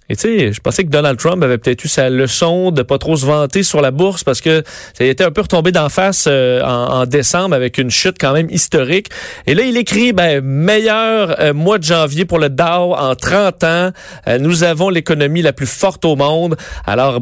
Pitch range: 135-180 Hz